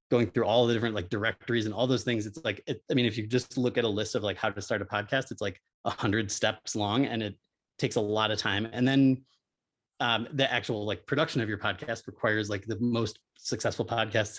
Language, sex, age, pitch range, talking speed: English, male, 30-49, 105-125 Hz, 240 wpm